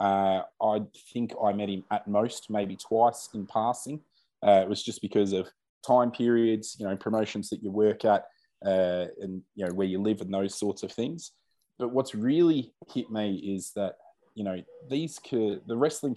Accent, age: Australian, 20-39